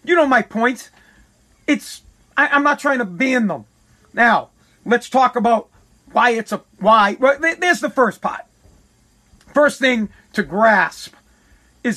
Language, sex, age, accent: English, male, 40-59, American